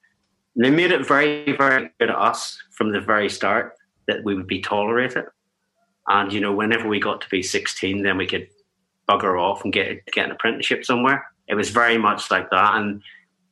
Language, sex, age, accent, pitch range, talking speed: English, male, 30-49, British, 100-130 Hz, 195 wpm